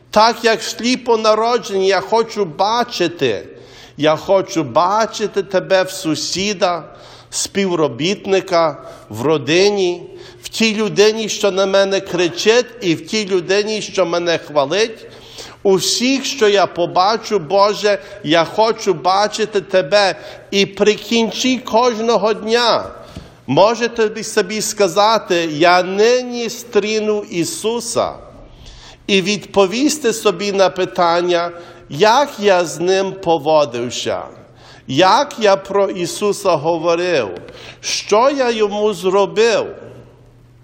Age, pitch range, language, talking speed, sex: 50-69, 170-215 Hz, English, 105 wpm, male